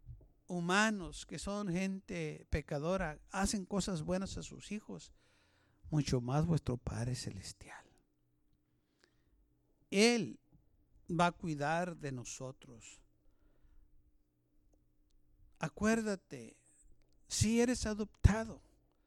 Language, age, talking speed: Spanish, 60-79, 85 wpm